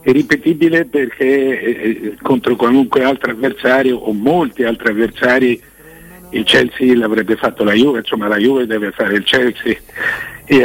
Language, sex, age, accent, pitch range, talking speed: Italian, male, 60-79, native, 115-150 Hz, 140 wpm